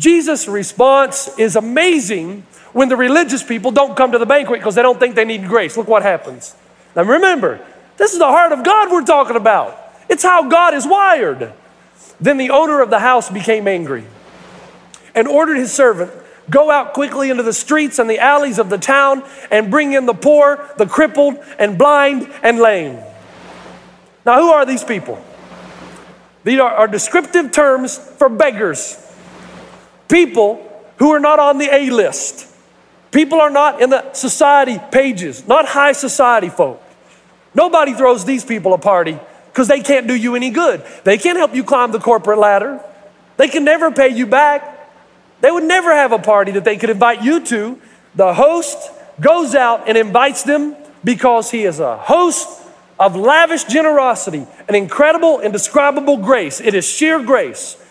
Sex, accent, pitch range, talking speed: male, American, 230-300 Hz, 170 wpm